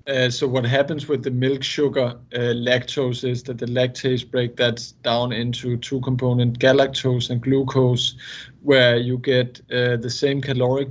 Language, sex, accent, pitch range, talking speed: English, male, Danish, 115-135 Hz, 165 wpm